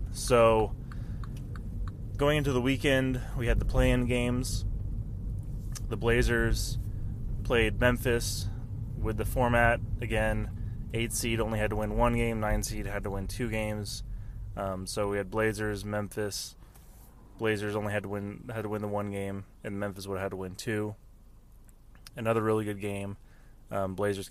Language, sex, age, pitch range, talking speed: English, male, 20-39, 100-120 Hz, 160 wpm